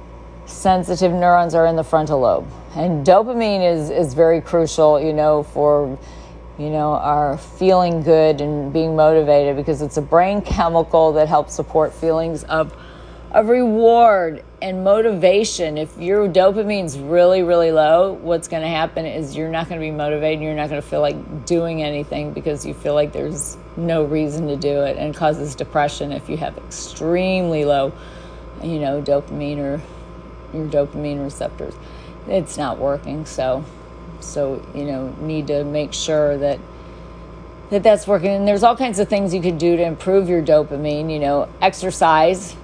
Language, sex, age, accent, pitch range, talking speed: English, female, 40-59, American, 150-170 Hz, 170 wpm